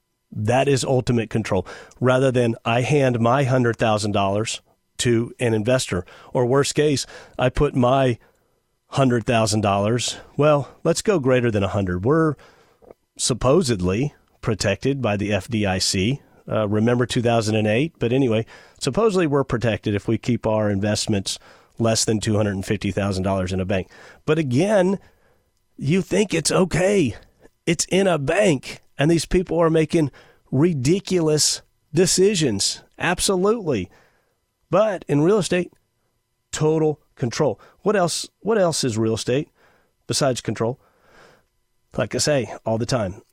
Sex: male